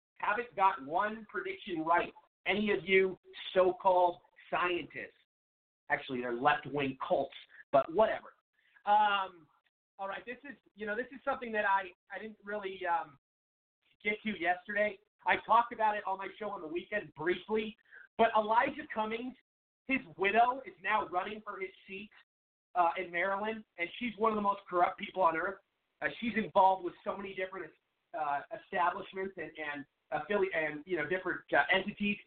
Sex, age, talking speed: male, 40-59, 160 wpm